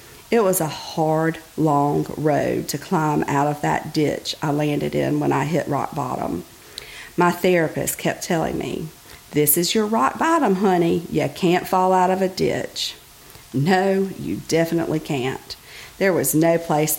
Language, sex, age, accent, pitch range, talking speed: English, female, 50-69, American, 150-180 Hz, 165 wpm